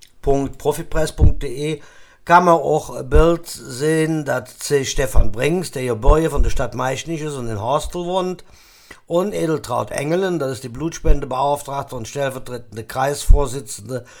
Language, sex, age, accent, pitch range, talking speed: German, male, 50-69, German, 135-165 Hz, 140 wpm